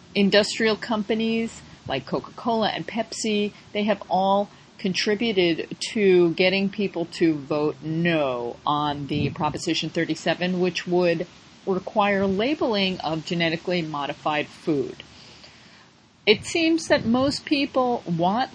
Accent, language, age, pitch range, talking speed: American, English, 40-59, 160-220 Hz, 110 wpm